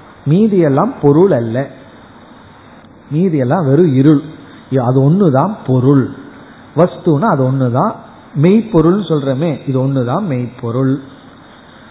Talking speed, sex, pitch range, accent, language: 60 wpm, male, 140-200 Hz, native, Tamil